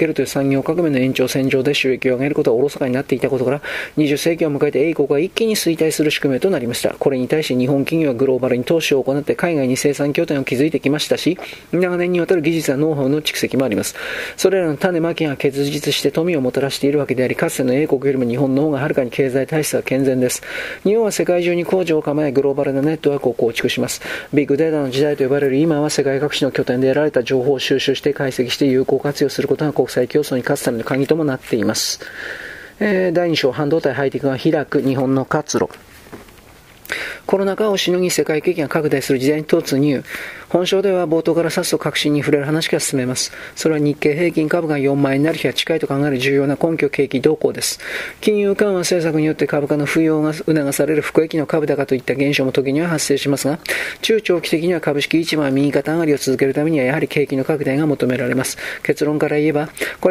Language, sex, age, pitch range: Japanese, male, 40-59, 140-165 Hz